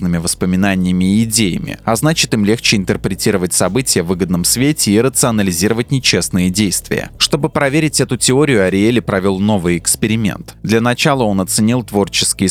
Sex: male